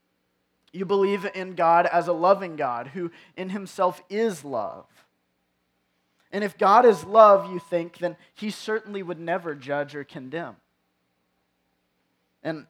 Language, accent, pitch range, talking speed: English, American, 110-180 Hz, 135 wpm